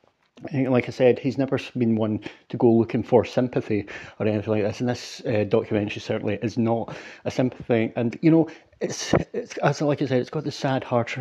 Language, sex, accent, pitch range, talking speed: English, male, British, 115-135 Hz, 210 wpm